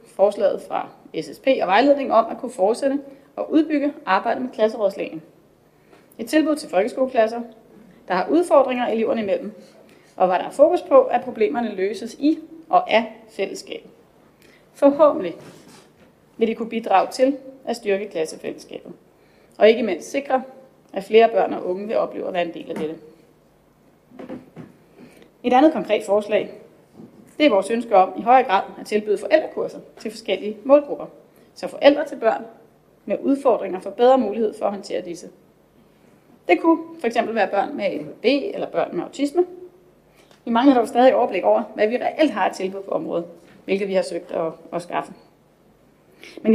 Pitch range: 200-280 Hz